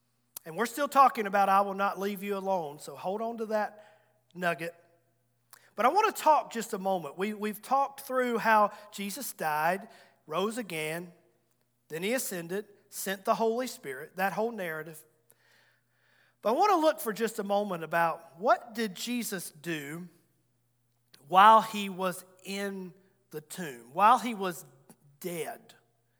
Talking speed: 155 wpm